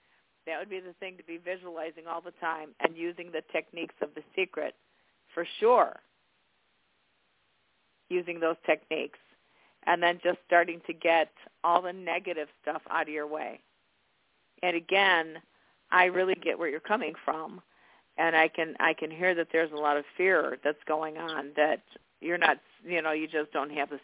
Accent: American